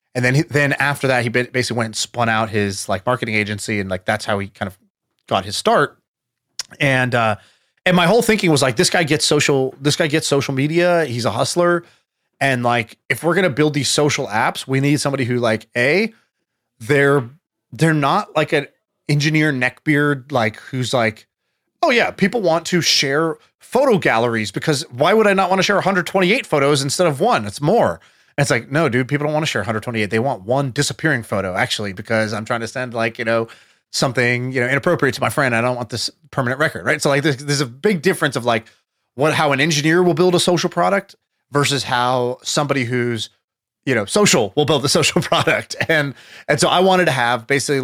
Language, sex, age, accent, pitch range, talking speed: English, male, 30-49, American, 120-160 Hz, 215 wpm